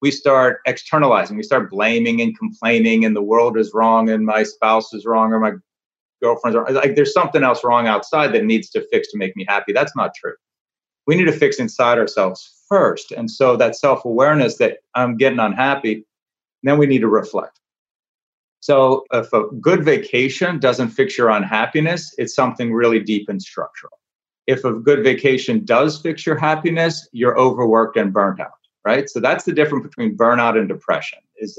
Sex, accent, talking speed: male, American, 185 wpm